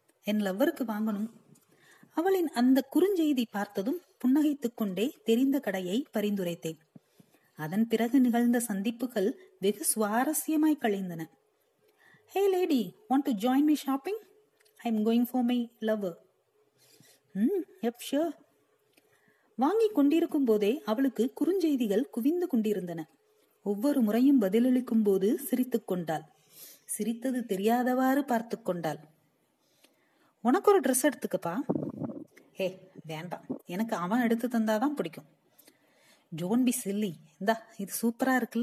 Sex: female